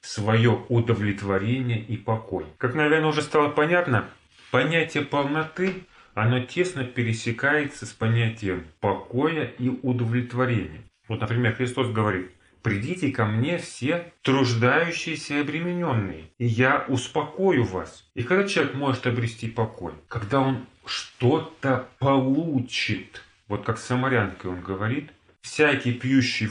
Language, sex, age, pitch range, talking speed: Russian, male, 30-49, 115-170 Hz, 115 wpm